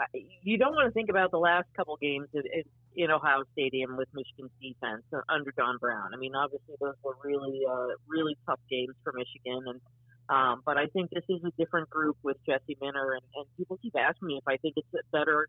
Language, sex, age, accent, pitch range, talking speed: English, female, 40-59, American, 135-175 Hz, 225 wpm